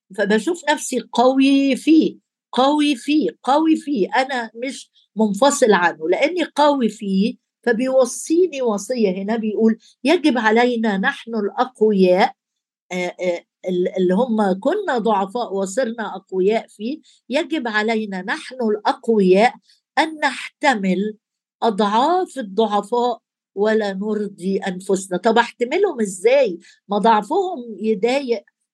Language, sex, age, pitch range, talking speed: Arabic, female, 50-69, 210-260 Hz, 95 wpm